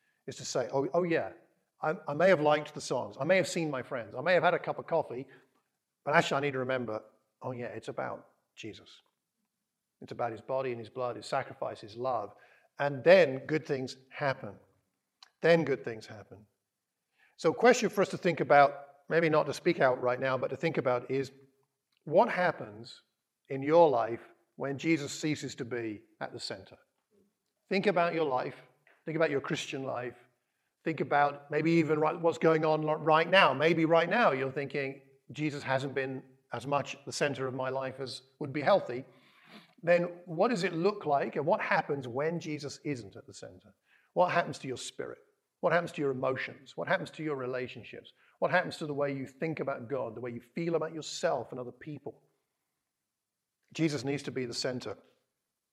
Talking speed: 195 wpm